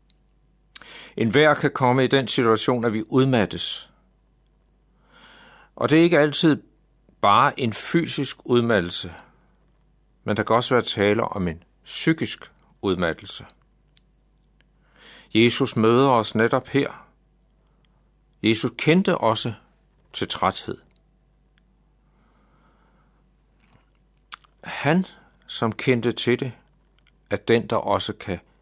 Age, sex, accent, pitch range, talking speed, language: 60-79, male, native, 105-140 Hz, 105 wpm, Danish